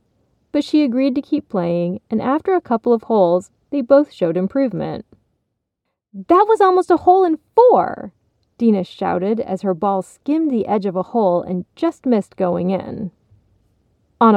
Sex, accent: female, American